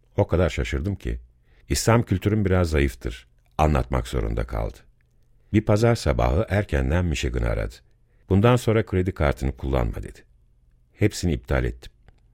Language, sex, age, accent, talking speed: Turkish, male, 50-69, native, 125 wpm